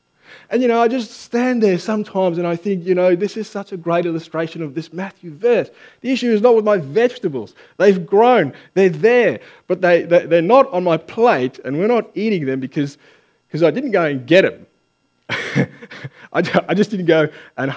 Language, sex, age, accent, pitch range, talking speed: English, male, 20-39, Australian, 130-200 Hz, 200 wpm